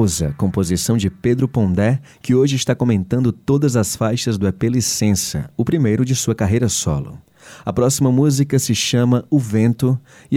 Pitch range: 100-135 Hz